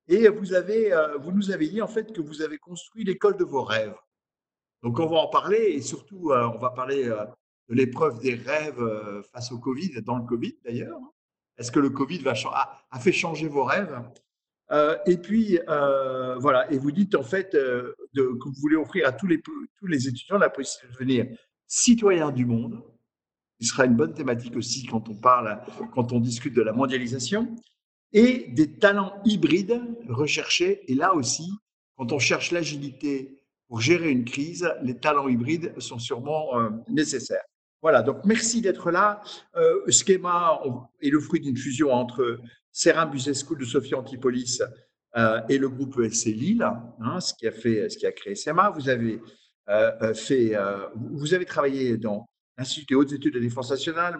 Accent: French